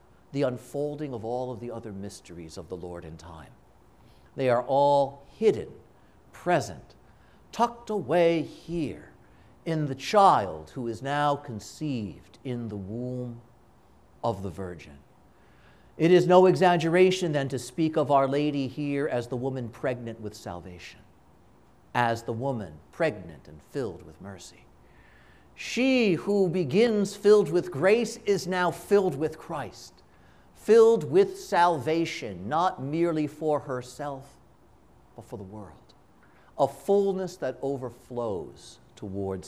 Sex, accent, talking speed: male, American, 130 wpm